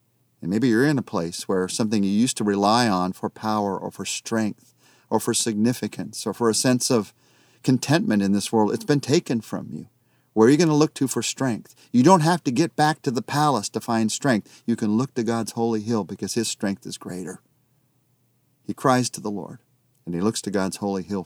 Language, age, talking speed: English, 40-59, 225 wpm